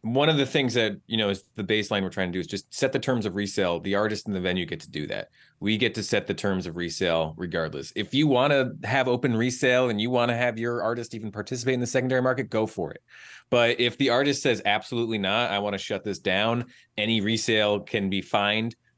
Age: 30-49